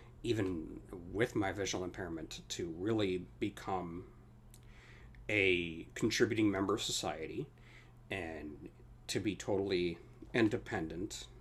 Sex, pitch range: male, 90-120 Hz